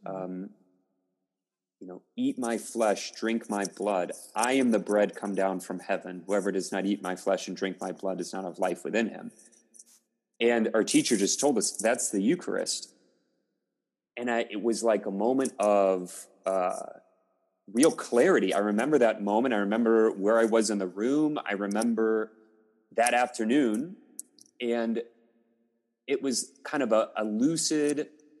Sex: male